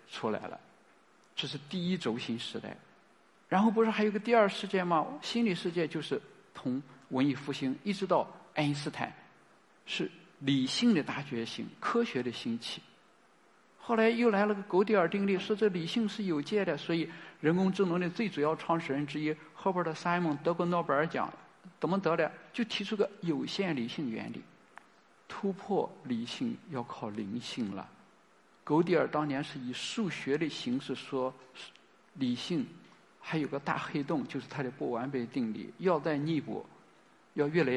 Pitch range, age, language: 140-200 Hz, 50-69, Chinese